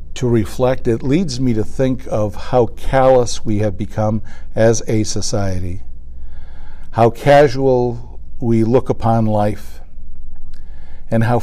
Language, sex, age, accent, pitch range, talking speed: English, male, 60-79, American, 85-125 Hz, 125 wpm